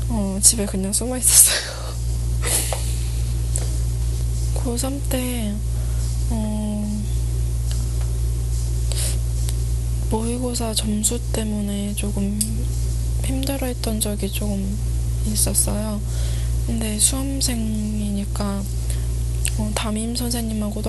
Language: Korean